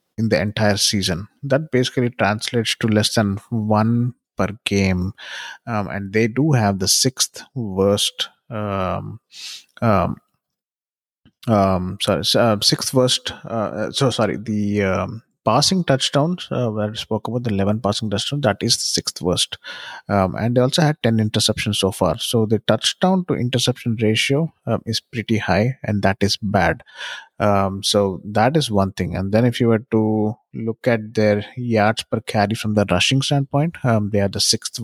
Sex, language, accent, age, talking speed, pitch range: male, English, Indian, 30-49, 170 wpm, 100-120 Hz